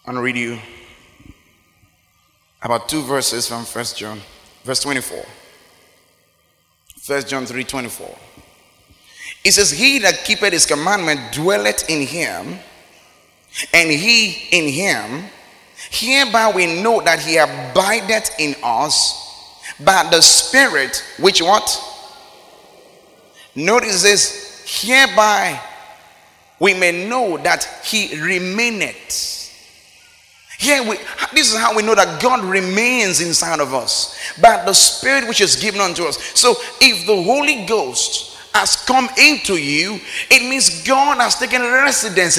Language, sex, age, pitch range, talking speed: English, male, 30-49, 165-250 Hz, 125 wpm